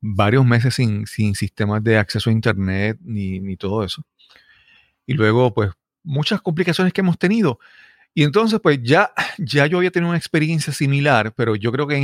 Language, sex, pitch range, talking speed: Spanish, male, 110-145 Hz, 185 wpm